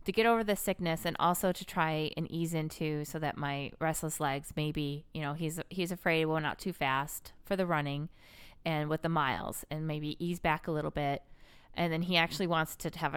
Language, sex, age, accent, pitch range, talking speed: English, female, 20-39, American, 145-175 Hz, 230 wpm